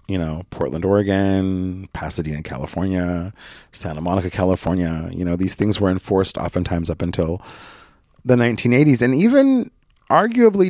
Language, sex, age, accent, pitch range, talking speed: English, male, 30-49, American, 90-125 Hz, 130 wpm